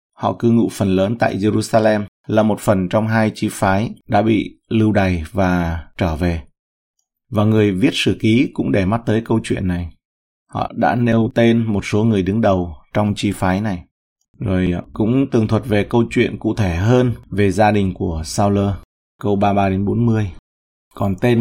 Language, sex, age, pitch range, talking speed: Vietnamese, male, 20-39, 100-120 Hz, 190 wpm